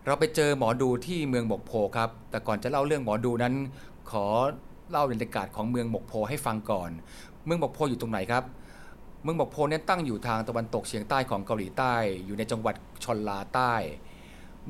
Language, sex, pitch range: Thai, male, 105-130 Hz